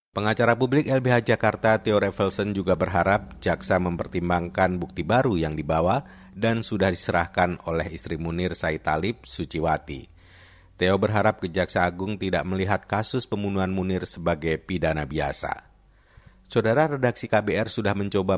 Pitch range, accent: 85-105 Hz, native